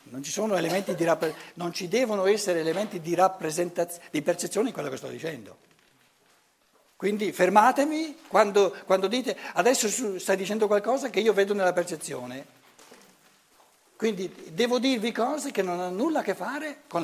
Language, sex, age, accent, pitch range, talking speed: Italian, male, 60-79, native, 150-235 Hz, 160 wpm